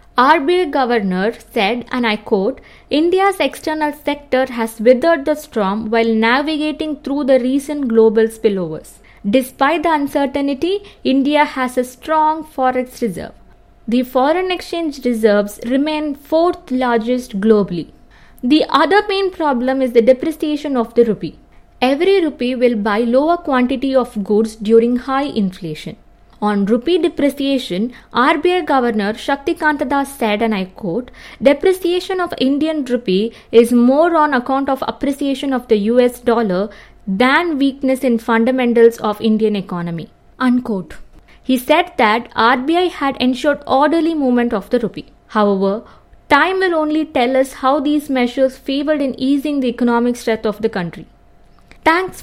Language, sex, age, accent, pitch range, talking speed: English, female, 20-39, Indian, 230-295 Hz, 140 wpm